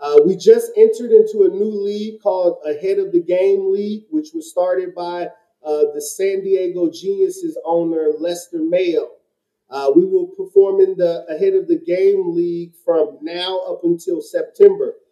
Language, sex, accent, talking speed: English, male, American, 165 wpm